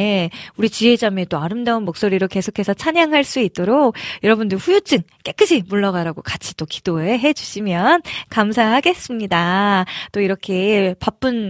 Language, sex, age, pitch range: Korean, female, 20-39, 190-260 Hz